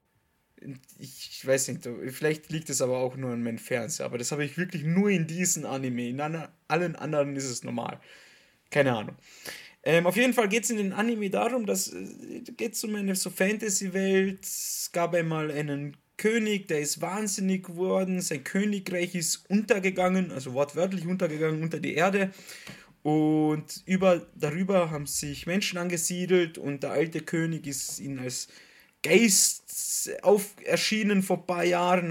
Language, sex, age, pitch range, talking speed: German, male, 20-39, 150-195 Hz, 160 wpm